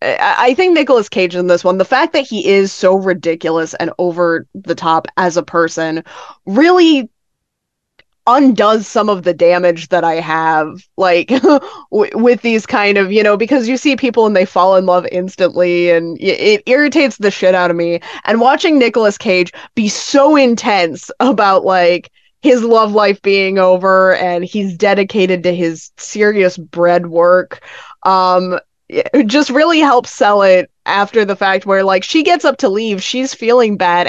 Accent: American